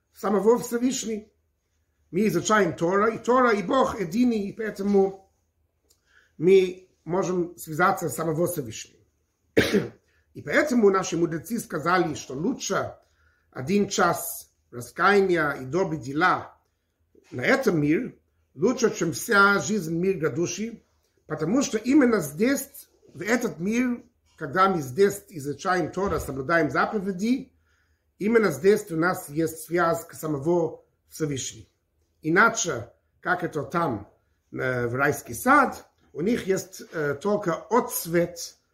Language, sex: Russian, male